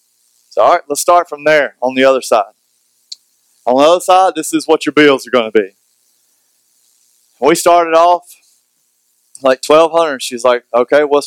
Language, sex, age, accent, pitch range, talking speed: English, male, 20-39, American, 120-155 Hz, 175 wpm